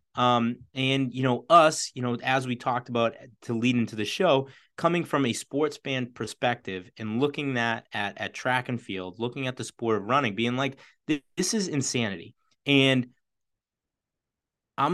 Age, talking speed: 30-49, 175 wpm